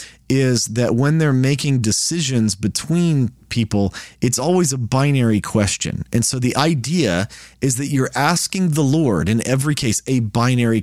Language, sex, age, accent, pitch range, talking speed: English, male, 30-49, American, 105-135 Hz, 155 wpm